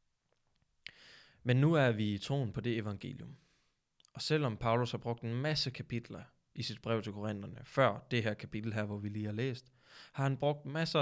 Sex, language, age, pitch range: male, Danish, 20-39, 110-135 Hz